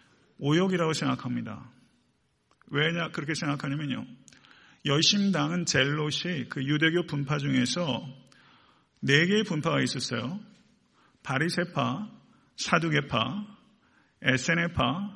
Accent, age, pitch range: native, 40-59, 135-180 Hz